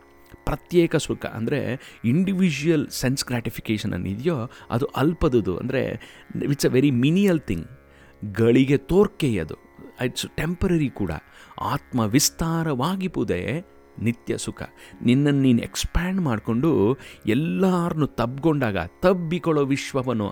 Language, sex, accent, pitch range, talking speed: Kannada, male, native, 105-160 Hz, 95 wpm